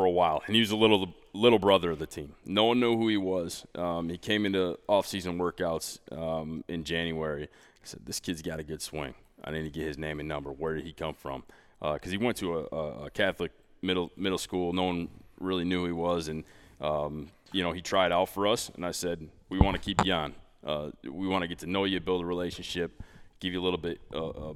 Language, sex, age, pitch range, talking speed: English, male, 20-39, 75-90 Hz, 245 wpm